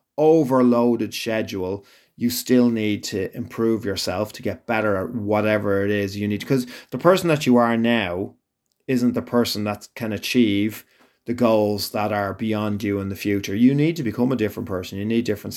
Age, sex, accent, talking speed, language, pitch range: 30-49, male, Irish, 190 wpm, English, 100-120 Hz